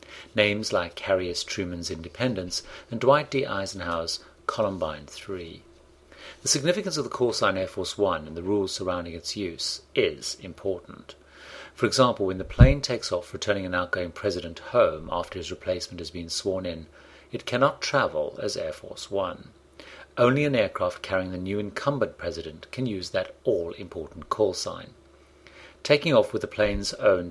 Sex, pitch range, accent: male, 85-120 Hz, British